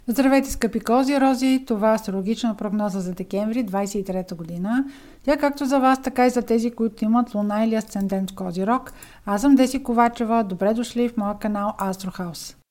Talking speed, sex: 170 wpm, female